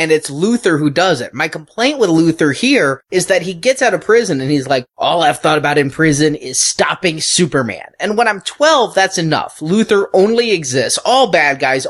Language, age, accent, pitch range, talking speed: English, 20-39, American, 145-200 Hz, 210 wpm